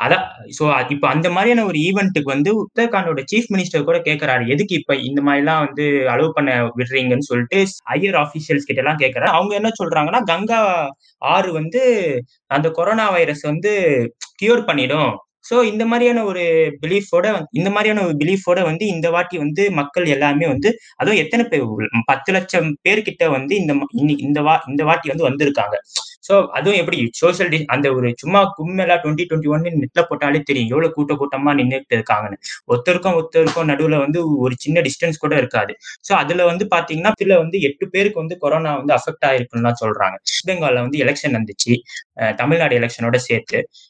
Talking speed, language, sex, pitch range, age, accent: 130 wpm, Tamil, male, 140-190 Hz, 20-39, native